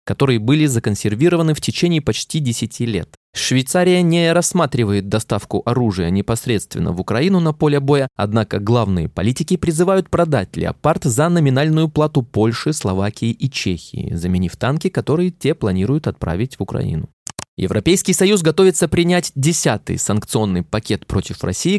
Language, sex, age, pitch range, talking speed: Russian, male, 20-39, 110-155 Hz, 135 wpm